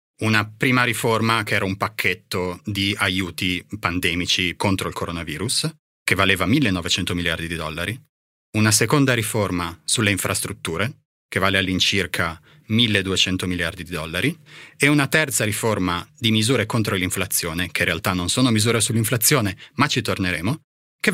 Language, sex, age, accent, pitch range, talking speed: Italian, male, 30-49, native, 95-135 Hz, 140 wpm